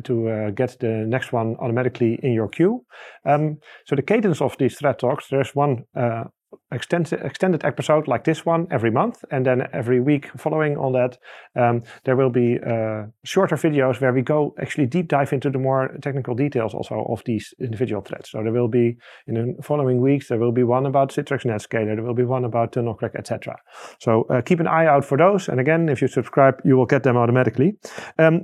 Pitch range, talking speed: 120-160 Hz, 210 wpm